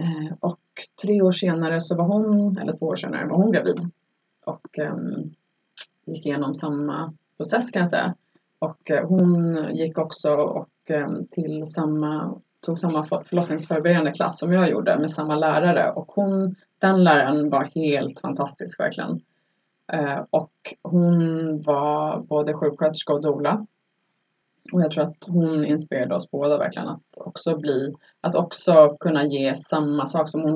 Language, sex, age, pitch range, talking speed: Swedish, female, 20-39, 150-180 Hz, 145 wpm